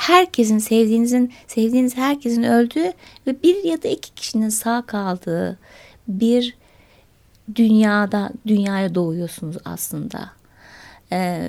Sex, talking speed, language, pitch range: female, 100 wpm, Turkish, 195-245 Hz